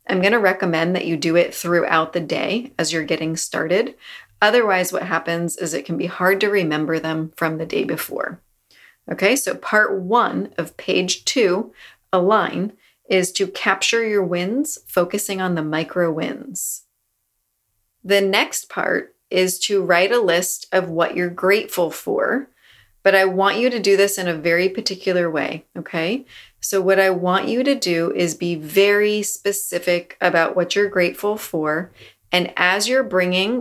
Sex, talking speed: female, 170 wpm